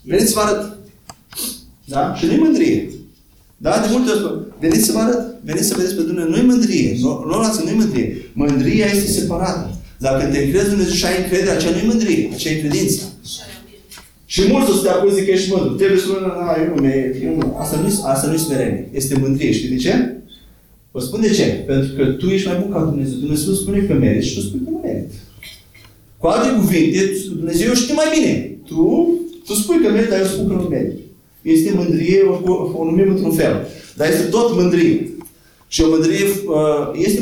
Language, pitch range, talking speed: Romanian, 155-200 Hz, 185 wpm